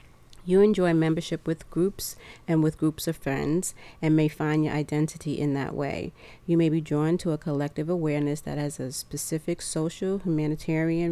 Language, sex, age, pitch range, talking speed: English, female, 40-59, 140-160 Hz, 175 wpm